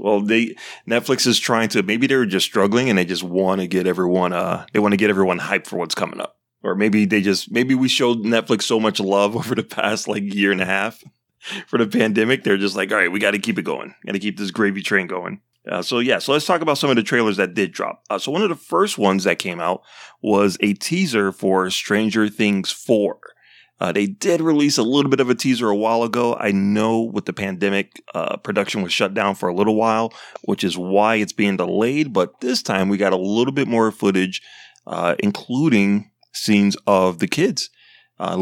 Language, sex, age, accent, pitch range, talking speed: English, male, 30-49, American, 100-120 Hz, 235 wpm